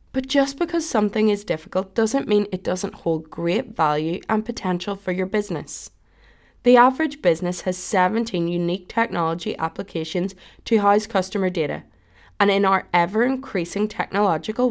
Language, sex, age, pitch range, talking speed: English, female, 20-39, 165-240 Hz, 145 wpm